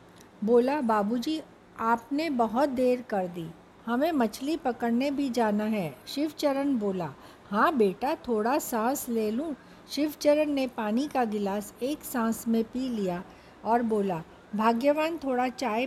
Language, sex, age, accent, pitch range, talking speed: Hindi, female, 60-79, native, 215-275 Hz, 135 wpm